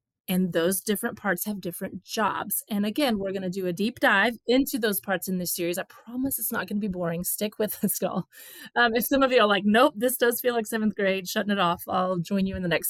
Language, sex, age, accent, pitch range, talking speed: English, female, 30-49, American, 180-240 Hz, 250 wpm